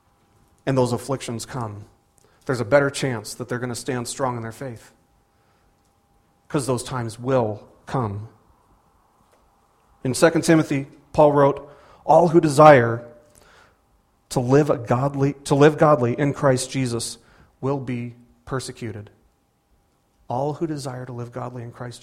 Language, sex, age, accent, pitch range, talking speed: English, male, 40-59, American, 115-150 Hz, 130 wpm